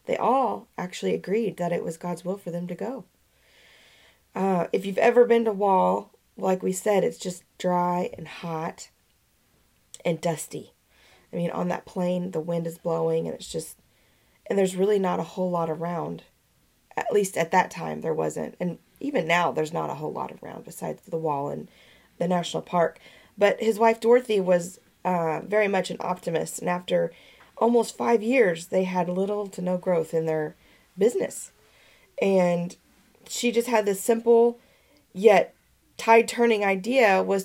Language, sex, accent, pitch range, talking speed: English, female, American, 175-220 Hz, 175 wpm